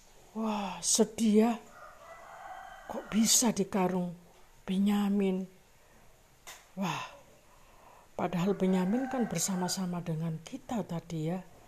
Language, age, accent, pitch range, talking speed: Indonesian, 50-69, native, 165-215 Hz, 80 wpm